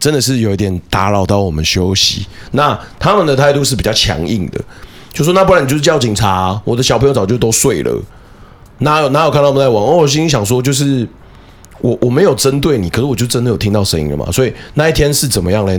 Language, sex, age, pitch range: Chinese, male, 30-49, 100-130 Hz